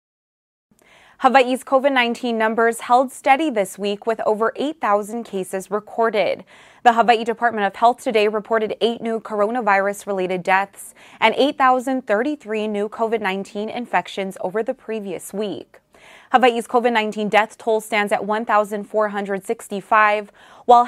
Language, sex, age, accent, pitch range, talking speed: English, female, 20-39, American, 205-240 Hz, 115 wpm